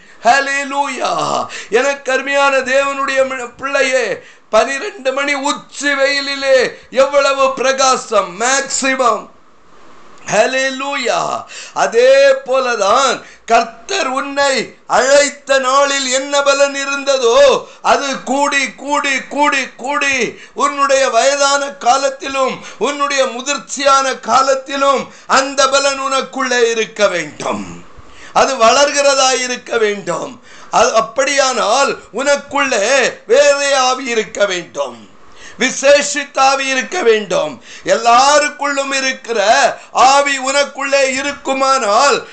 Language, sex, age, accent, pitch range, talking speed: Tamil, male, 50-69, native, 255-280 Hz, 70 wpm